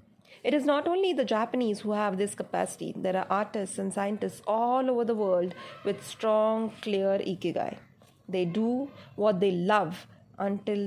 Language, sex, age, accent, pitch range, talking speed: Marathi, female, 30-49, native, 185-225 Hz, 160 wpm